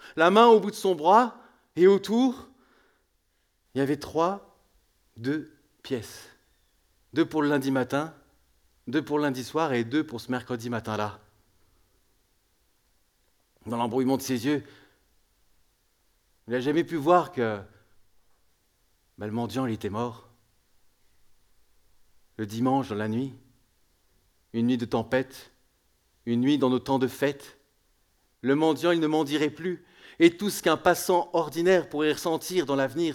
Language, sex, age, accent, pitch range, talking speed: English, male, 40-59, French, 100-145 Hz, 145 wpm